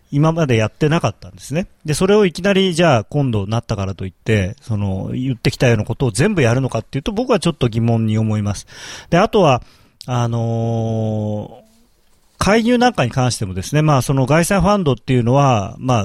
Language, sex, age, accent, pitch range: Japanese, male, 40-59, native, 115-175 Hz